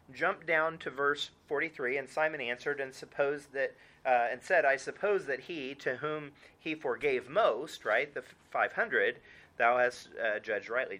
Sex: male